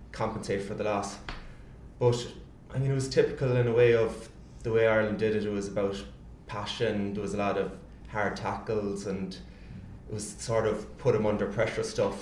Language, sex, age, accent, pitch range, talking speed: English, male, 20-39, Irish, 95-110 Hz, 195 wpm